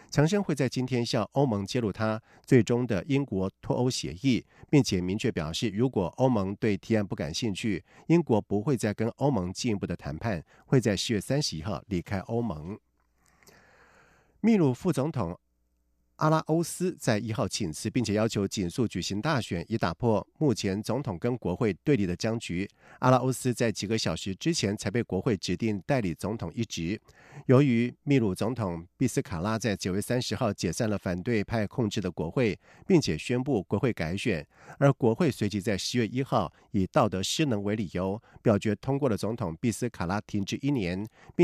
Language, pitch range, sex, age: German, 100-130 Hz, male, 50-69